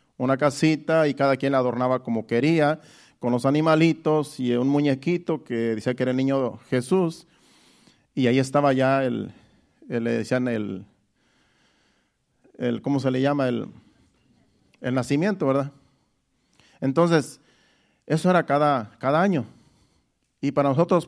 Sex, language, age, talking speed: male, Spanish, 40-59, 140 wpm